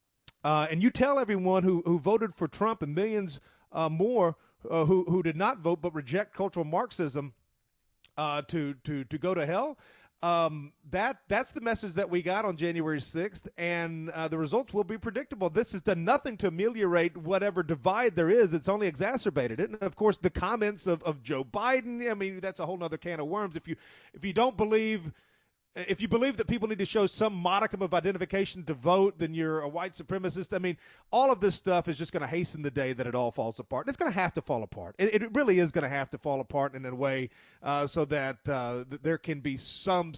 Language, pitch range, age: English, 140-195 Hz, 40-59